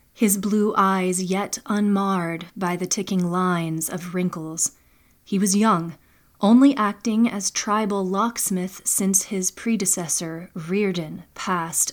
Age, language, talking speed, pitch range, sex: 30-49, English, 120 wpm, 180-205 Hz, female